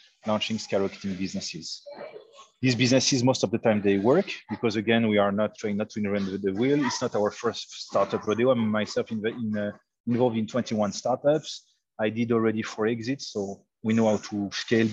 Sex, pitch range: male, 105-125 Hz